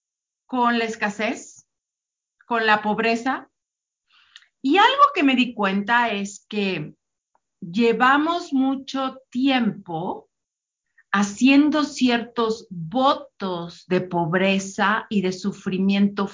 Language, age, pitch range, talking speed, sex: English, 40-59, 185-250 Hz, 90 wpm, female